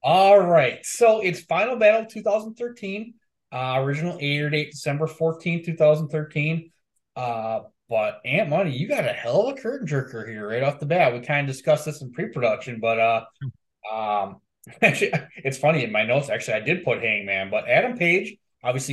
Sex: male